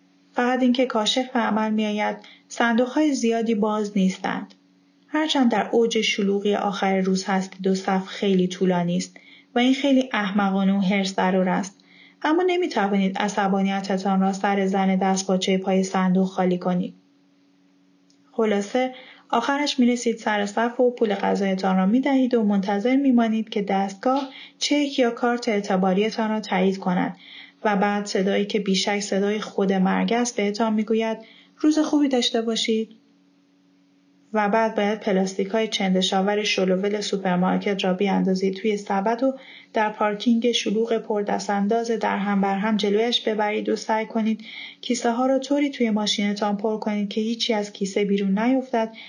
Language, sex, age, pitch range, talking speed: Persian, female, 30-49, 195-230 Hz, 150 wpm